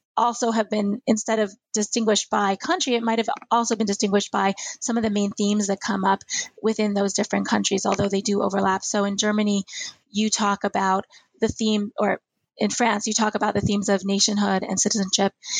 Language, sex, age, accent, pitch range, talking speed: English, female, 20-39, American, 205-235 Hz, 195 wpm